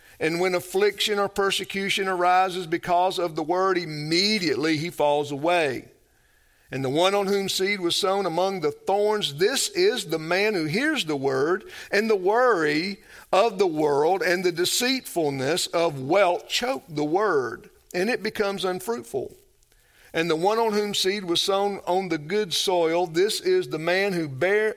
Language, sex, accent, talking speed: English, male, American, 165 wpm